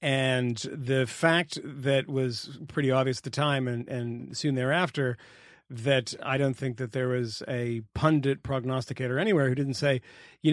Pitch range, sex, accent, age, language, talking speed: 125-150 Hz, male, American, 40-59, English, 165 wpm